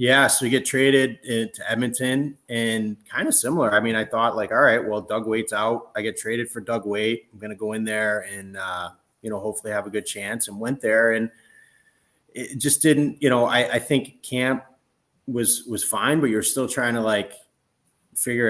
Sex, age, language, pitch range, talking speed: male, 30-49, English, 100-115 Hz, 210 wpm